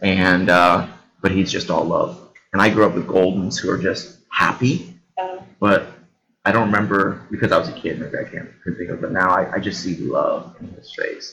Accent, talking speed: American, 220 wpm